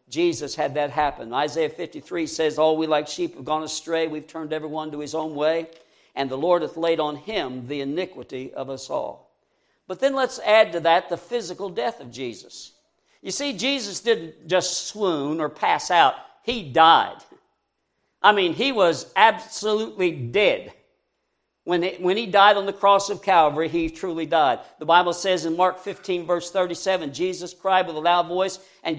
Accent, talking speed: American, 180 wpm